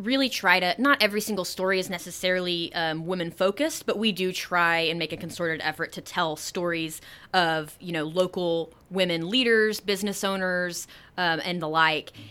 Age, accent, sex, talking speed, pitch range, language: 20-39, American, female, 175 wpm, 165-210 Hz, English